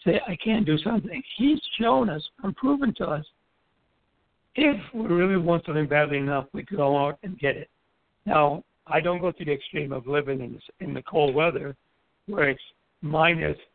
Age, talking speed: 60-79, 190 wpm